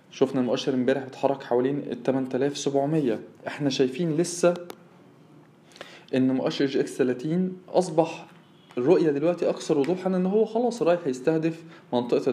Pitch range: 135-180 Hz